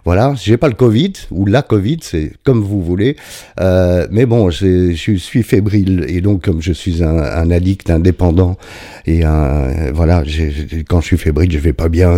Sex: male